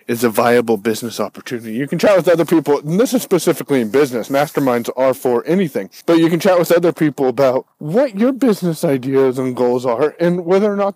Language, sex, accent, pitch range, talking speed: English, male, American, 130-215 Hz, 220 wpm